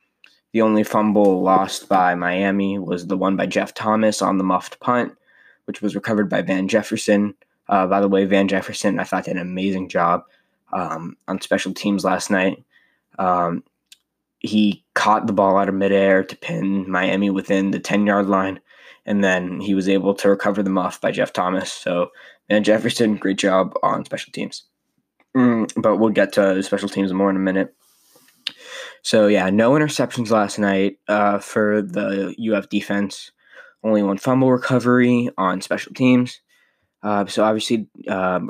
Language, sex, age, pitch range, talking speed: English, male, 10-29, 95-105 Hz, 170 wpm